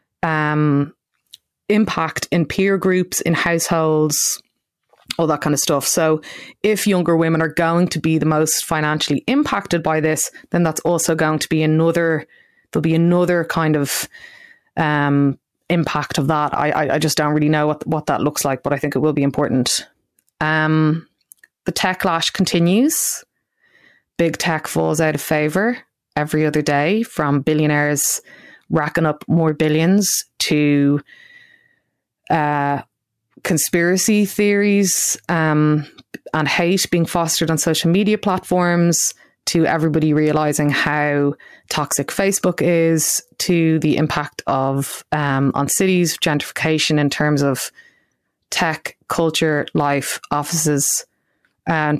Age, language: 20-39, English